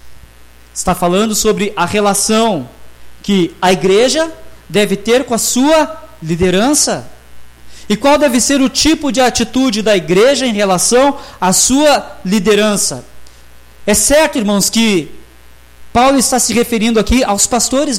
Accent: Brazilian